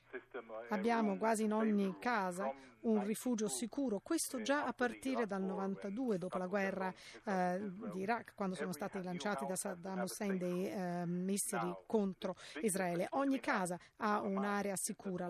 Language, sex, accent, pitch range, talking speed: Italian, female, native, 185-235 Hz, 145 wpm